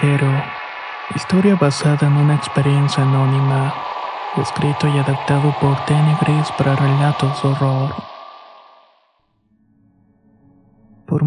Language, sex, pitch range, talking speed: Spanish, male, 140-150 Hz, 90 wpm